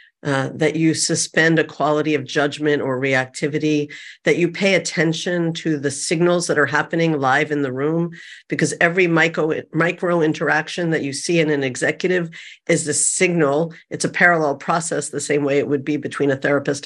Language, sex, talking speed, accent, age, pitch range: English, female, 180 wpm, American, 50-69, 140-165 Hz